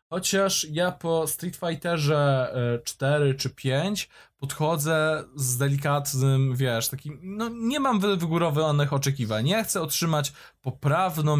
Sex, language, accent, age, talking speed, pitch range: male, Polish, native, 20-39, 115 wpm, 130-160 Hz